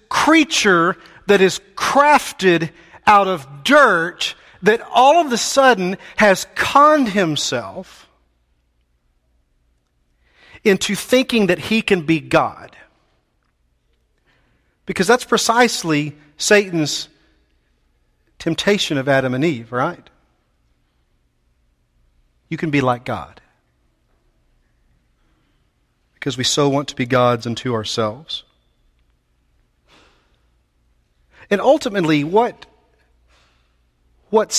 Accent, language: American, English